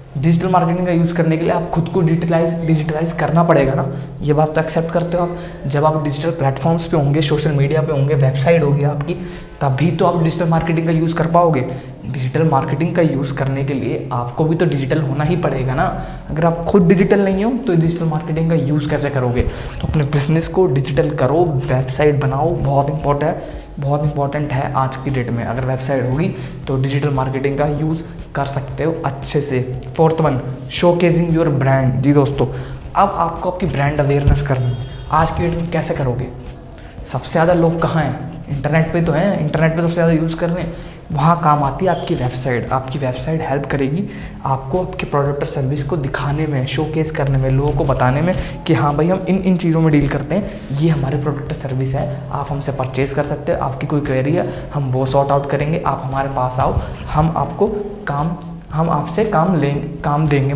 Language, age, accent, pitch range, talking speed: Hindi, 20-39, native, 135-165 Hz, 205 wpm